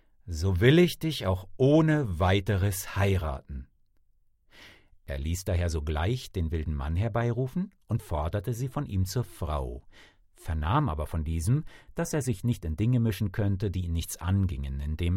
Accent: German